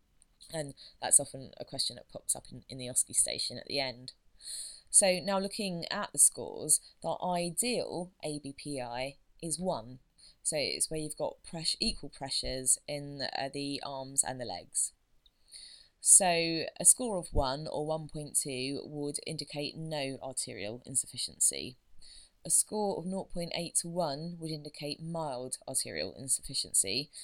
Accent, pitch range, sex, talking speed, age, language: British, 130-175 Hz, female, 145 wpm, 20-39, English